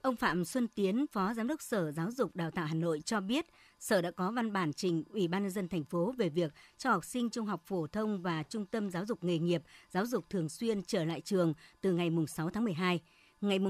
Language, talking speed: Vietnamese, 250 wpm